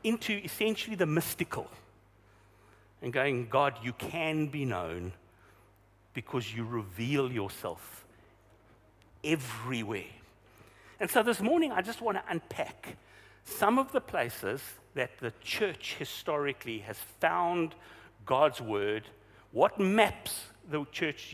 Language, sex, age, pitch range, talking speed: English, male, 60-79, 105-165 Hz, 110 wpm